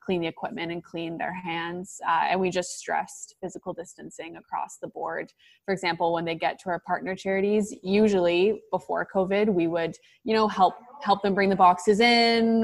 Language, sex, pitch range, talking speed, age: English, female, 170-195 Hz, 185 wpm, 20-39